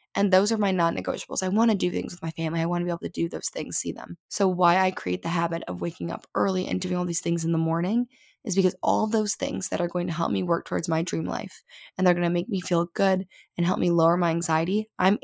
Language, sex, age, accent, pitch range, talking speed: English, female, 20-39, American, 170-200 Hz, 290 wpm